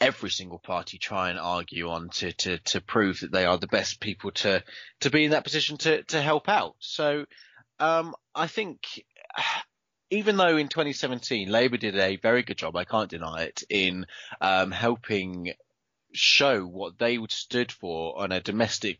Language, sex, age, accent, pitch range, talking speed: English, male, 20-39, British, 100-135 Hz, 180 wpm